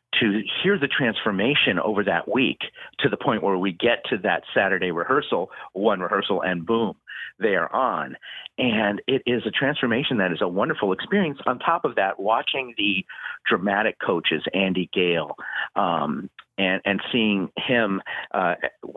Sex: male